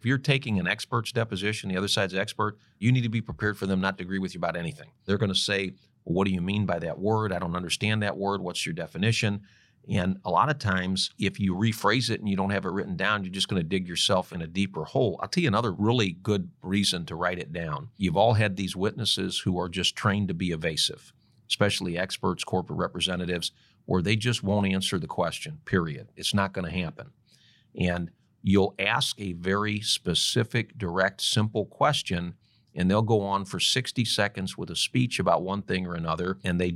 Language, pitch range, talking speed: English, 95-115 Hz, 220 wpm